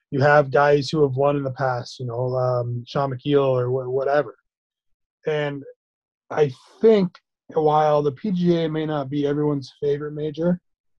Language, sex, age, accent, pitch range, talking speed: English, male, 30-49, American, 130-150 Hz, 155 wpm